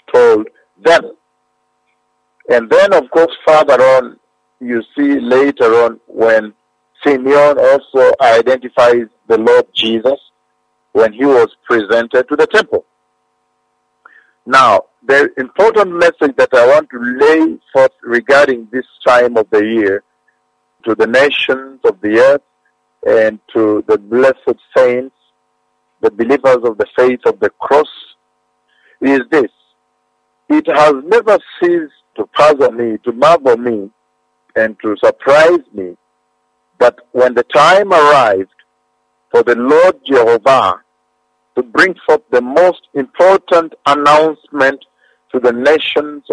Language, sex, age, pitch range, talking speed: English, male, 50-69, 110-175 Hz, 125 wpm